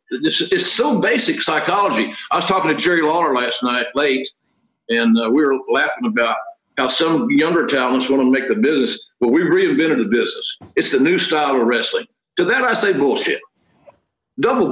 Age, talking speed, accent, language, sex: 60-79, 190 wpm, American, English, male